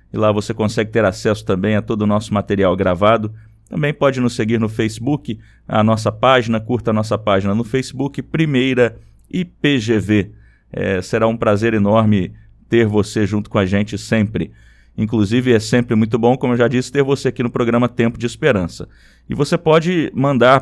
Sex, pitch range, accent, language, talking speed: male, 105-135 Hz, Brazilian, Portuguese, 180 wpm